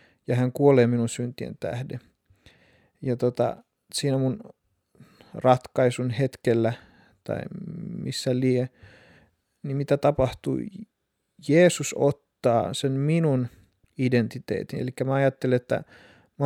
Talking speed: 100 wpm